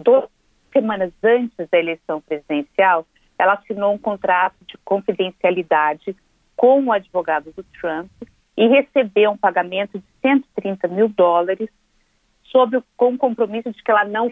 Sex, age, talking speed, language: female, 50-69, 145 wpm, Portuguese